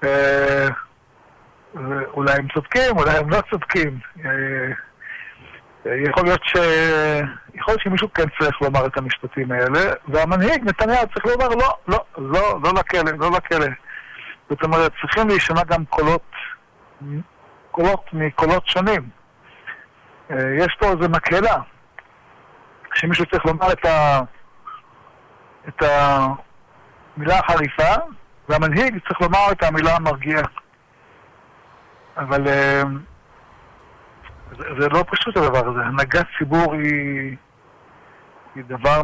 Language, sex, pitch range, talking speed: Hebrew, male, 140-180 Hz, 110 wpm